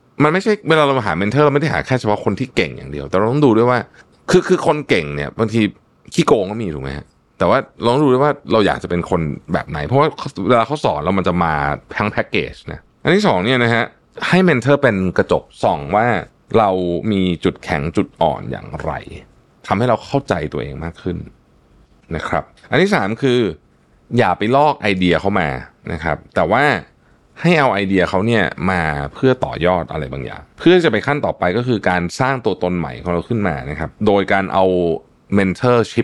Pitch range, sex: 85-120 Hz, male